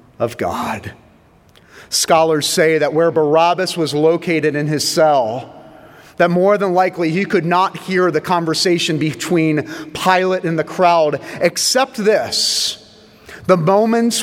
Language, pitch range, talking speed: English, 155-210 Hz, 130 wpm